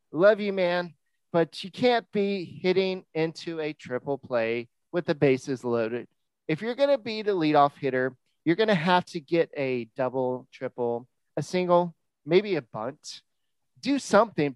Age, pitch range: 30-49, 130-175 Hz